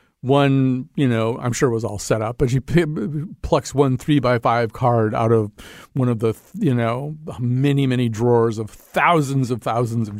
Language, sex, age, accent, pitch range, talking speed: English, male, 50-69, American, 120-155 Hz, 195 wpm